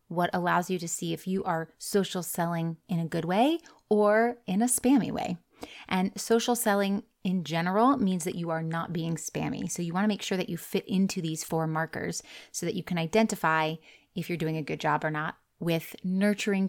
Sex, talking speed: female, 210 wpm